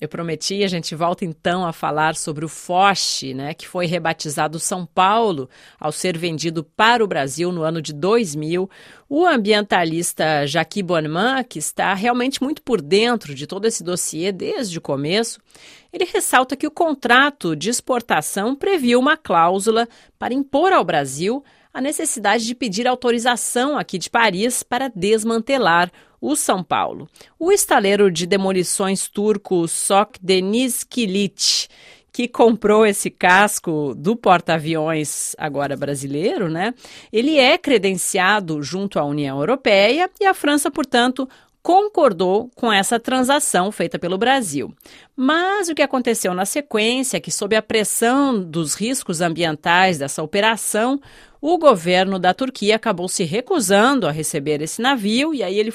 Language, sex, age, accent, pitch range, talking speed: Portuguese, female, 40-59, Brazilian, 175-250 Hz, 145 wpm